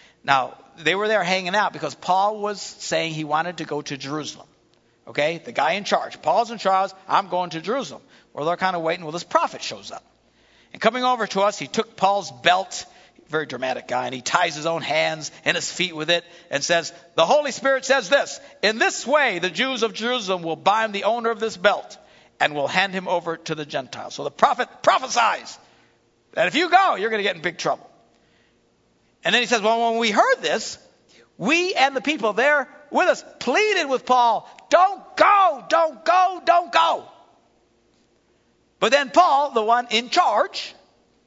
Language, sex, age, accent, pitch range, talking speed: English, male, 60-79, American, 165-270 Hz, 200 wpm